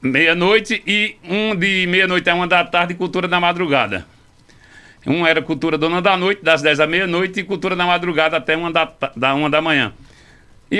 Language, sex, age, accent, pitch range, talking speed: Portuguese, male, 60-79, Brazilian, 155-200 Hz, 190 wpm